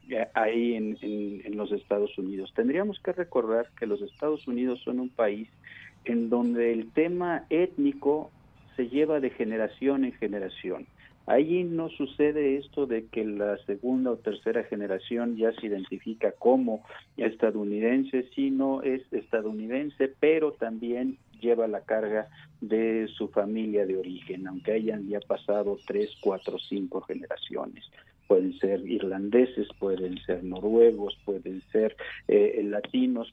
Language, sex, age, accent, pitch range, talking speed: Spanish, male, 50-69, Mexican, 105-135 Hz, 135 wpm